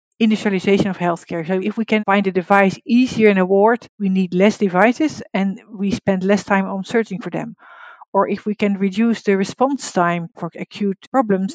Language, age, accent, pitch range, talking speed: English, 50-69, Dutch, 185-220 Hz, 195 wpm